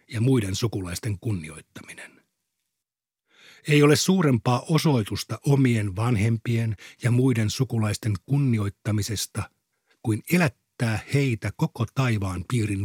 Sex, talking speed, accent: male, 95 wpm, native